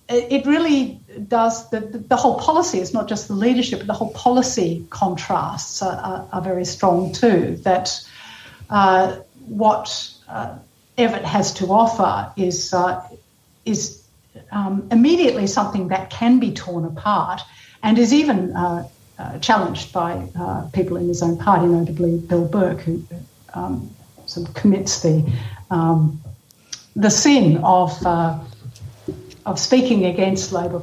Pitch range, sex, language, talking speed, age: 170-215 Hz, female, English, 140 wpm, 60-79